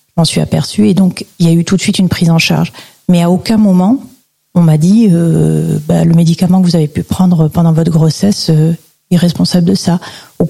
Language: French